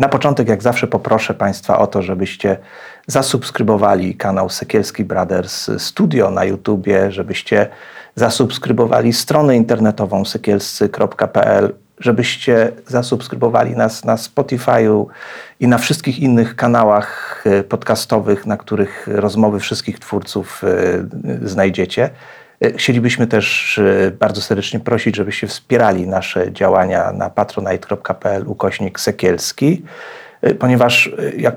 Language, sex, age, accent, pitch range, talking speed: Polish, male, 40-59, native, 100-120 Hz, 100 wpm